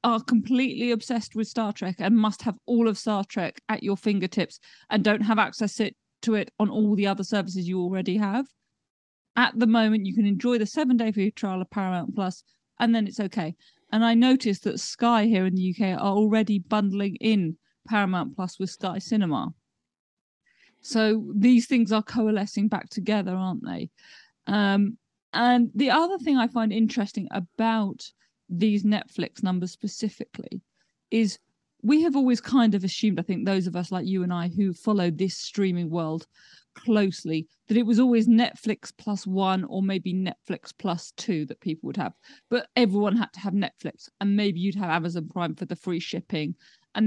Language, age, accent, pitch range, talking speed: English, 40-59, British, 185-225 Hz, 180 wpm